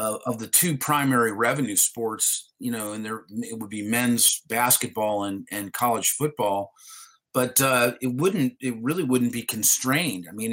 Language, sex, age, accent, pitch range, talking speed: English, male, 30-49, American, 115-140 Hz, 170 wpm